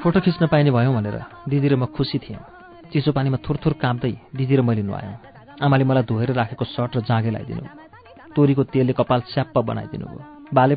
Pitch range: 120-150 Hz